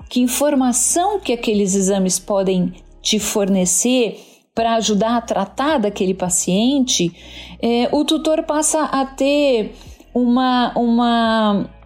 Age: 50-69